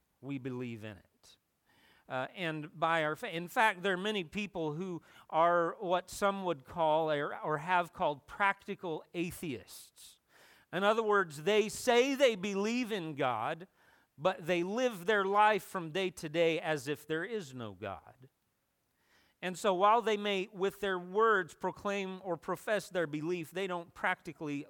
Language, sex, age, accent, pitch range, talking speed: English, male, 40-59, American, 165-220 Hz, 160 wpm